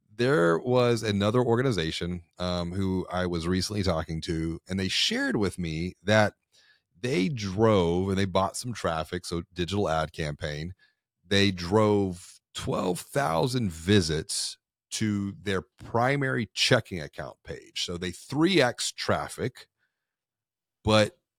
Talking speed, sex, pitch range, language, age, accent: 120 wpm, male, 85-105 Hz, English, 40-59, American